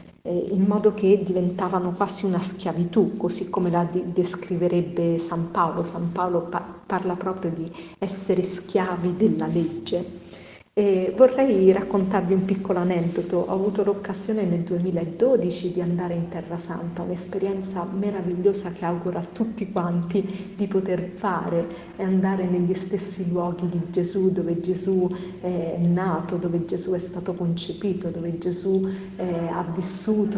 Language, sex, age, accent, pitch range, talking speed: Italian, female, 40-59, native, 175-195 Hz, 130 wpm